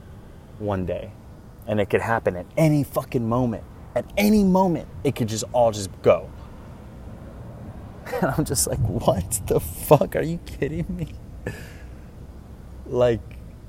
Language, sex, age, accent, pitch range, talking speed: English, male, 20-39, American, 95-120 Hz, 135 wpm